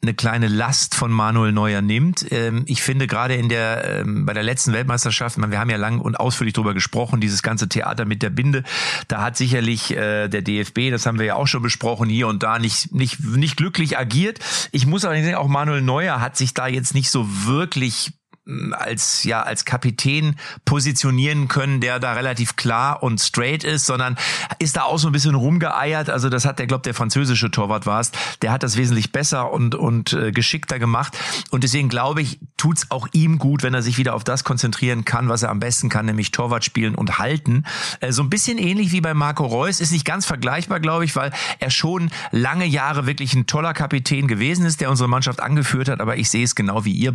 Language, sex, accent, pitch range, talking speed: German, male, German, 115-145 Hz, 215 wpm